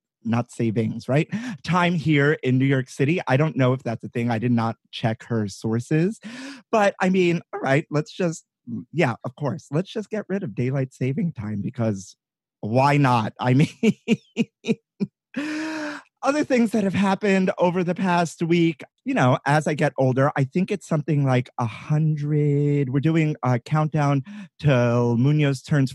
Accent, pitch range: American, 125-180 Hz